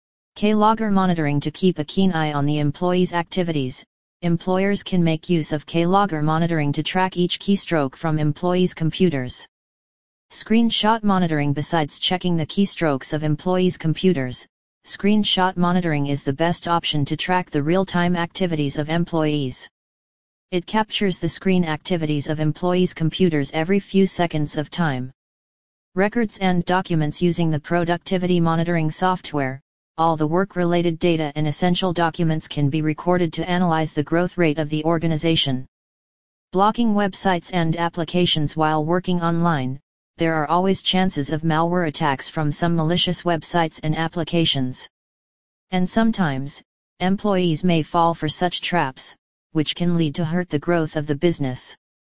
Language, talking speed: English, 145 wpm